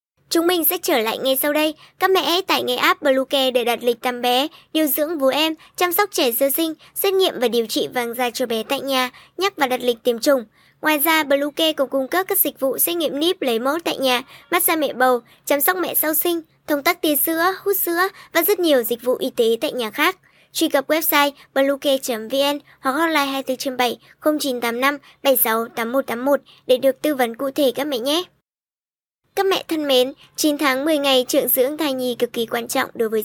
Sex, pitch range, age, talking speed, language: male, 250-315 Hz, 20-39, 220 wpm, Vietnamese